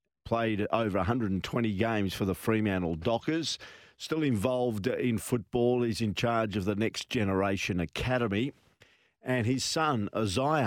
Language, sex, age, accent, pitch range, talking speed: English, male, 50-69, Australian, 105-125 Hz, 135 wpm